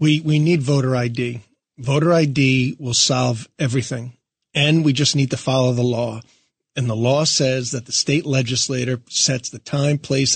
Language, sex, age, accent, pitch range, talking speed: English, male, 40-59, American, 130-160 Hz, 175 wpm